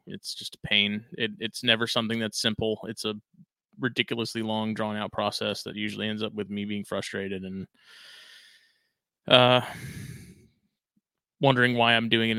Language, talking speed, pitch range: English, 155 wpm, 105-150 Hz